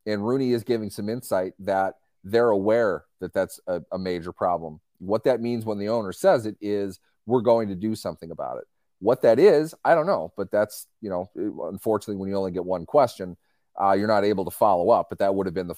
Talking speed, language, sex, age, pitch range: 230 wpm, English, male, 30-49, 95-120 Hz